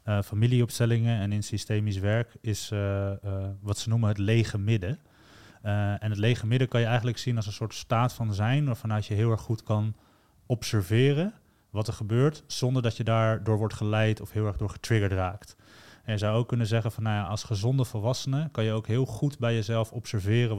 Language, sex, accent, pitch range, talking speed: Dutch, male, Dutch, 105-125 Hz, 210 wpm